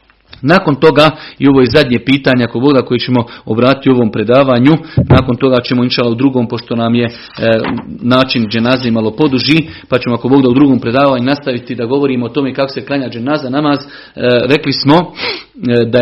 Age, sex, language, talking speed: 40-59, male, Croatian, 185 wpm